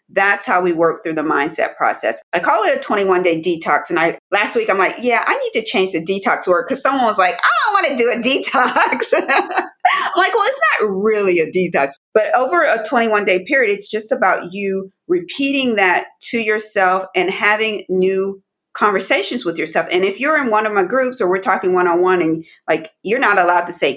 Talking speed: 215 wpm